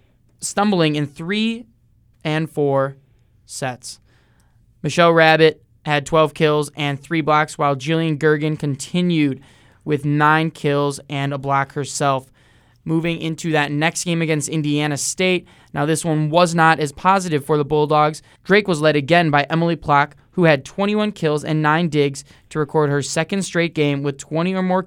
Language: English